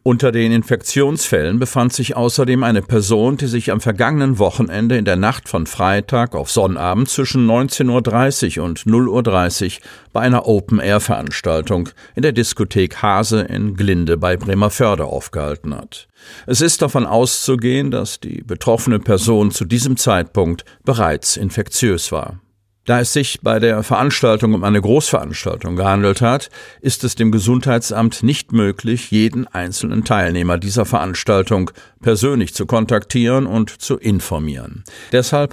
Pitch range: 100-125 Hz